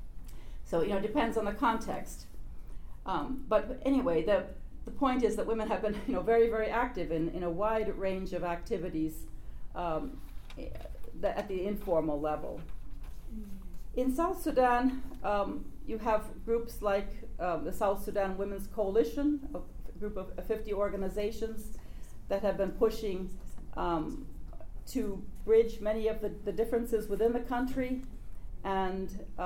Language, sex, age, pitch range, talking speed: English, female, 40-59, 185-225 Hz, 150 wpm